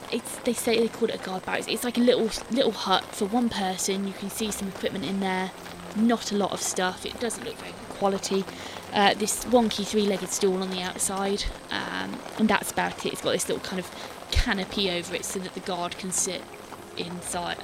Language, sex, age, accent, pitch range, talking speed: English, female, 20-39, British, 190-225 Hz, 220 wpm